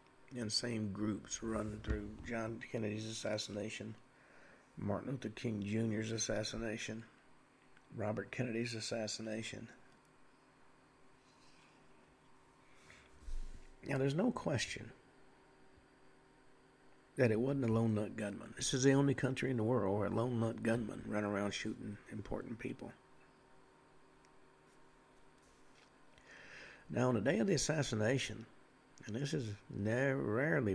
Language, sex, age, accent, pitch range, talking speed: English, male, 60-79, American, 105-130 Hz, 105 wpm